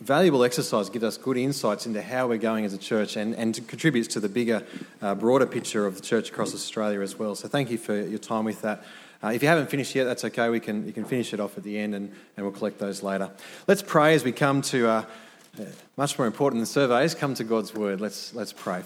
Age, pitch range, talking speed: 30-49, 110-145 Hz, 260 wpm